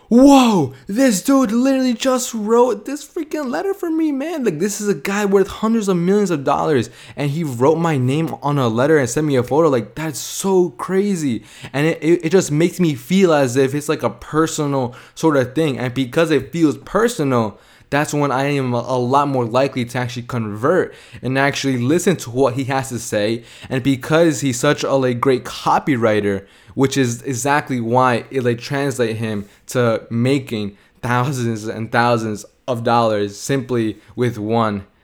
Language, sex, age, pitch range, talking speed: English, male, 20-39, 120-150 Hz, 180 wpm